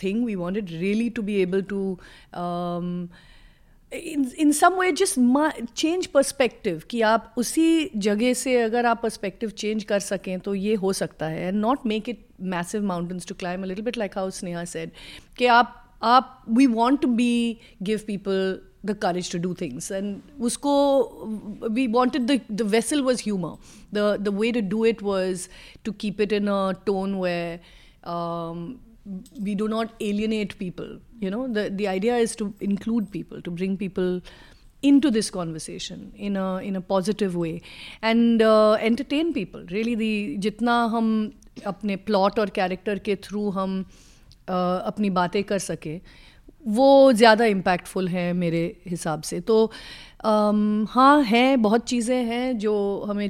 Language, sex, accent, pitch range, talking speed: Hindi, female, native, 190-230 Hz, 165 wpm